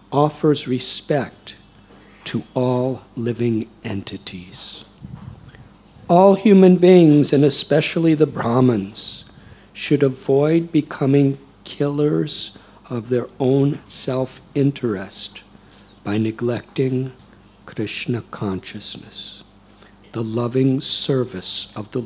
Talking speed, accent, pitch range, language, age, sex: 80 wpm, American, 100-130 Hz, English, 50-69, male